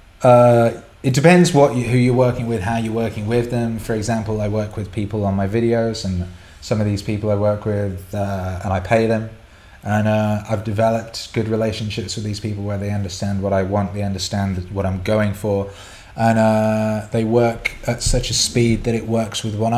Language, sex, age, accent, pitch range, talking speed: English, male, 20-39, British, 95-115 Hz, 210 wpm